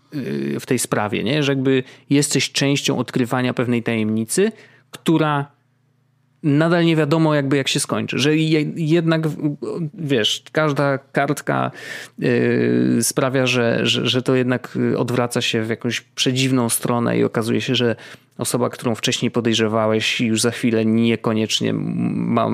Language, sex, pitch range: Polish, male, 115-145 Hz